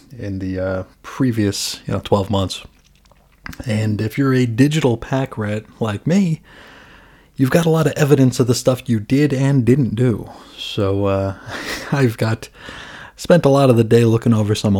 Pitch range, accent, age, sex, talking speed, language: 105-130 Hz, American, 30-49, male, 180 wpm, English